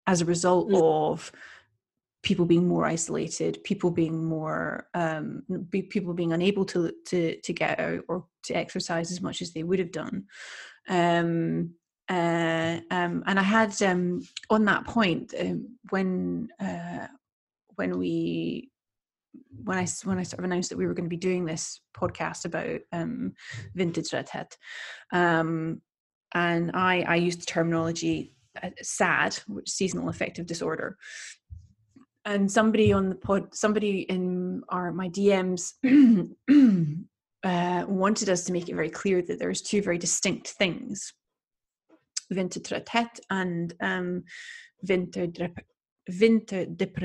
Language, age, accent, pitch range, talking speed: English, 30-49, British, 170-195 Hz, 130 wpm